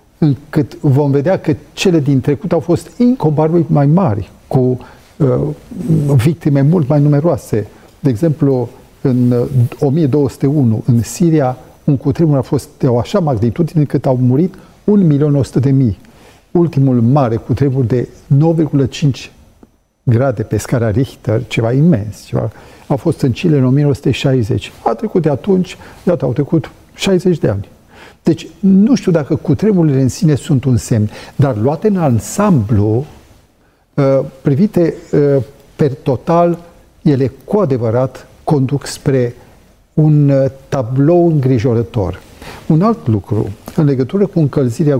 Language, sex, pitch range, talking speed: Romanian, male, 120-155 Hz, 135 wpm